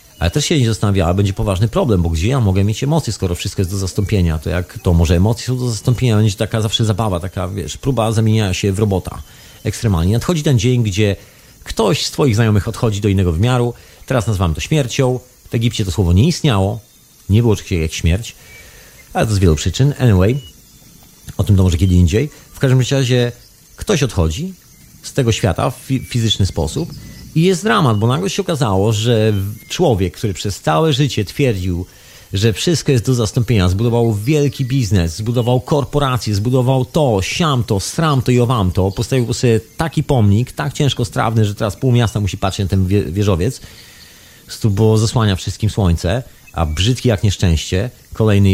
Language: Polish